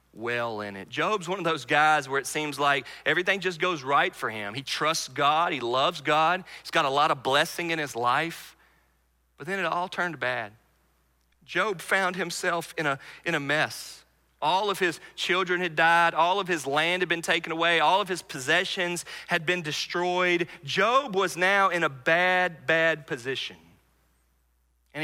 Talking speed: 180 wpm